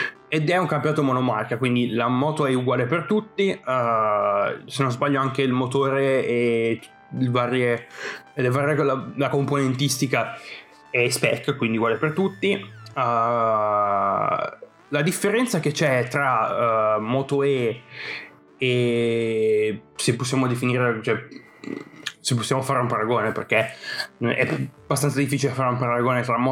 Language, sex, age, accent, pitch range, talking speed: Italian, male, 20-39, native, 120-145 Hz, 120 wpm